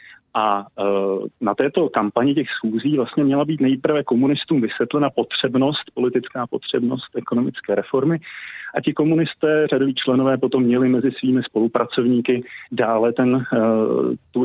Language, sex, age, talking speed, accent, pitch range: Czech, male, 30-49, 120 wpm, native, 115-130 Hz